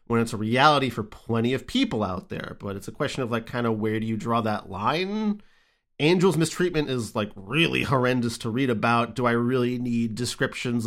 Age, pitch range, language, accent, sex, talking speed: 30-49, 115-150 Hz, English, American, male, 210 wpm